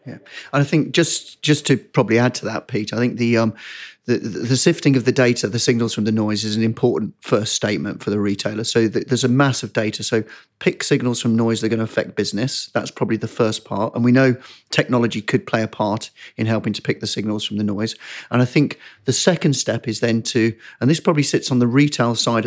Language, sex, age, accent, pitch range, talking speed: English, male, 40-59, British, 115-135 Hz, 250 wpm